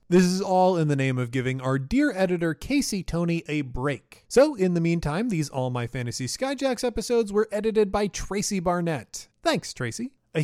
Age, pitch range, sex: 30-49, 140-215 Hz, male